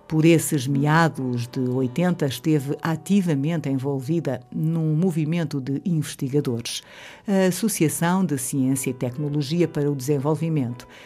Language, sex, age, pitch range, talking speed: Portuguese, female, 50-69, 135-175 Hz, 115 wpm